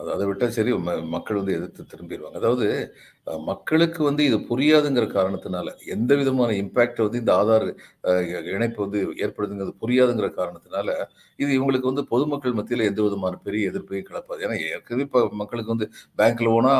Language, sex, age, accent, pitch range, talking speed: Tamil, male, 50-69, native, 105-135 Hz, 145 wpm